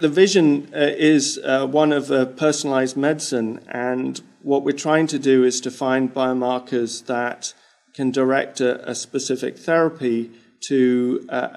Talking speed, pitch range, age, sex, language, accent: 150 wpm, 120-135 Hz, 40-59, male, English, British